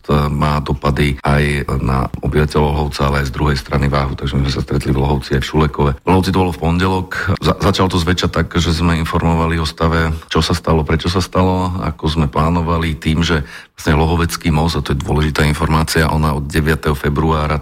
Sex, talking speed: male, 200 wpm